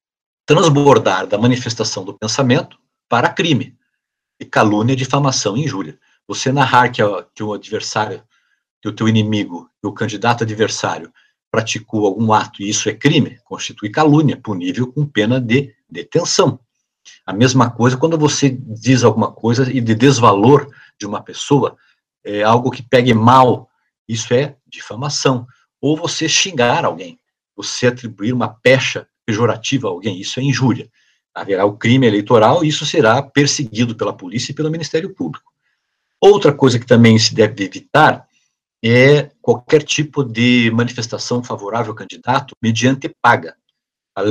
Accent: Brazilian